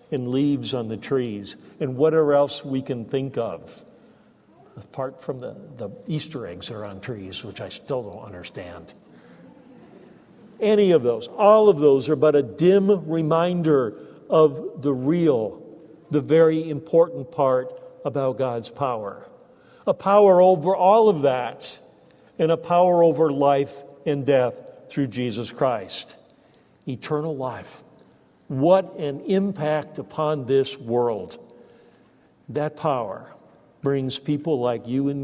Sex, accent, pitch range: male, American, 135-180 Hz